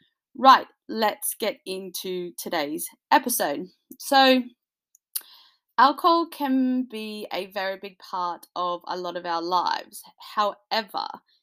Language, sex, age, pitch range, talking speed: English, female, 20-39, 185-255 Hz, 110 wpm